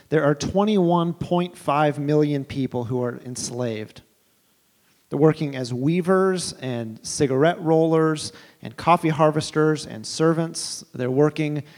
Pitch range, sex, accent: 140-165 Hz, male, American